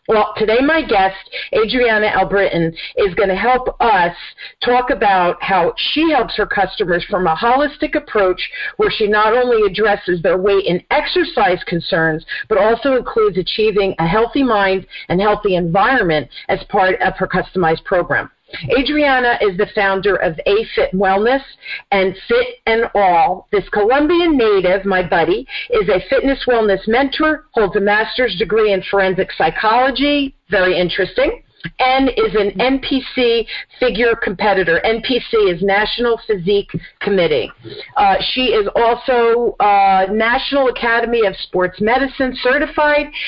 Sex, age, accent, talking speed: female, 50-69, American, 140 wpm